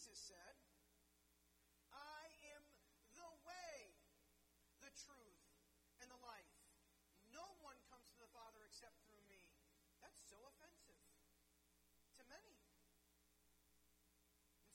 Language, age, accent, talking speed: English, 40-59, American, 105 wpm